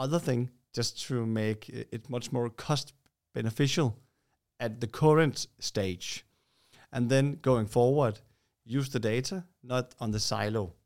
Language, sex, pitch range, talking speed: English, male, 115-140 Hz, 135 wpm